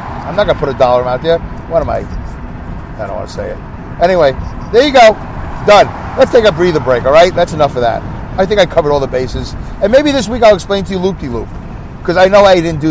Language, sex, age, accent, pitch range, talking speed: English, male, 50-69, American, 115-170 Hz, 265 wpm